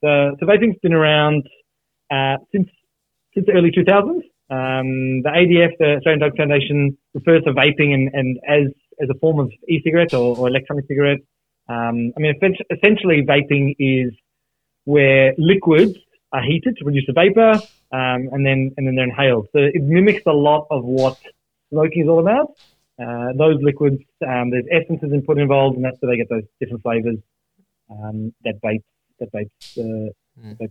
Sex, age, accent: male, 20-39, Australian